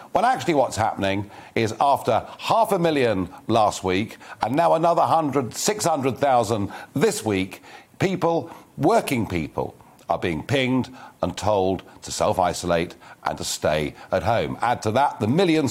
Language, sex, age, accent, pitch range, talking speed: English, male, 50-69, British, 100-145 Hz, 155 wpm